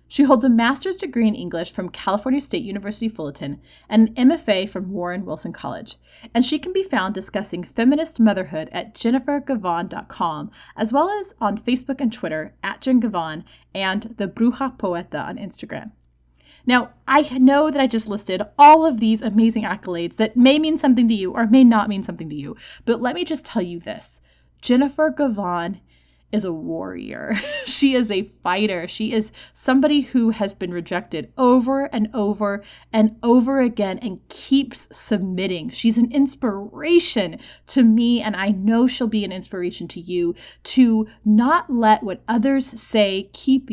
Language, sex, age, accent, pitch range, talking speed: English, female, 20-39, American, 195-260 Hz, 170 wpm